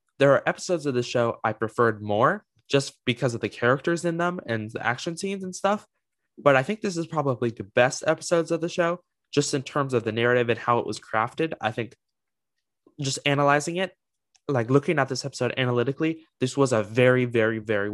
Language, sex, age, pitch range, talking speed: English, male, 20-39, 115-145 Hz, 205 wpm